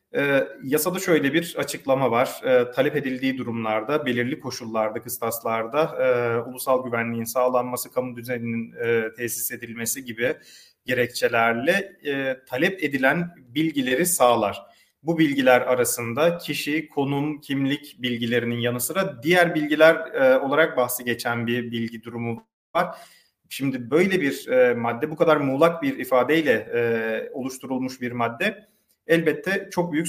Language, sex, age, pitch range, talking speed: Turkish, male, 40-59, 125-160 Hz, 130 wpm